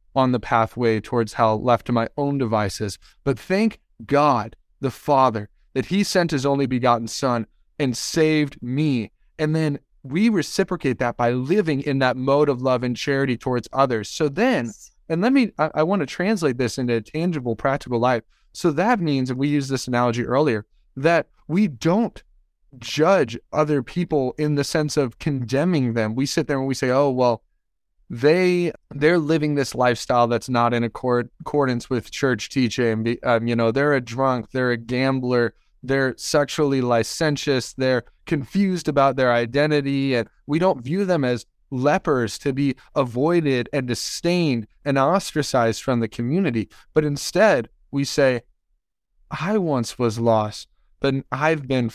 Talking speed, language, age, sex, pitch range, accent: 165 wpm, English, 20-39, male, 120-155 Hz, American